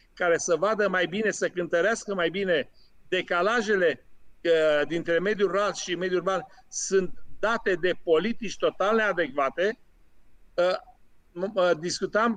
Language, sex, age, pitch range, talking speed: Romanian, male, 50-69, 175-210 Hz, 120 wpm